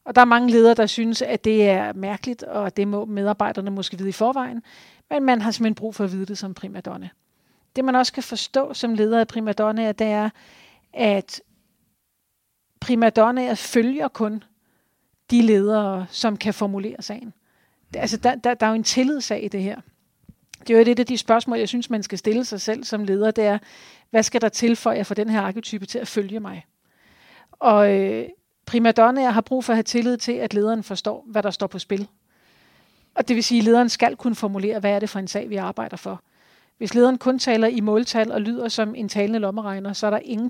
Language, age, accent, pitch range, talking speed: Danish, 40-59, native, 205-235 Hz, 220 wpm